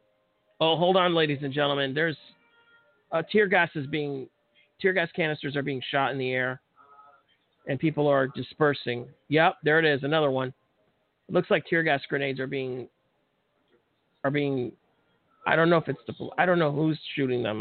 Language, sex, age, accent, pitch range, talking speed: English, male, 40-59, American, 130-180 Hz, 180 wpm